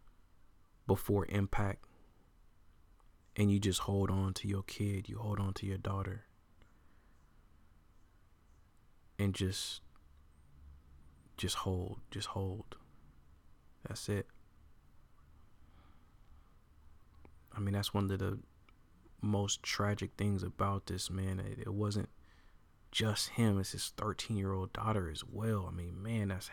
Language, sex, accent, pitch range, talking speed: English, male, American, 80-105 Hz, 120 wpm